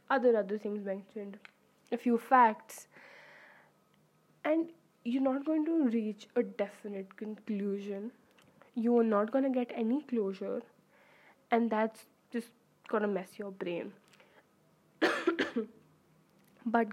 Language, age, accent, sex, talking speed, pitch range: English, 10-29, Indian, female, 115 wpm, 200-235 Hz